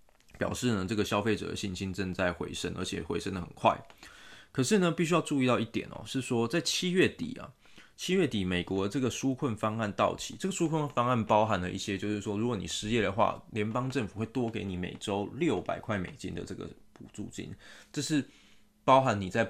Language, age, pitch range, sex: Chinese, 20-39, 95-125 Hz, male